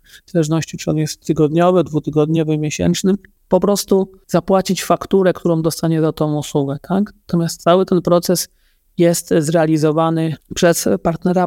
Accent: native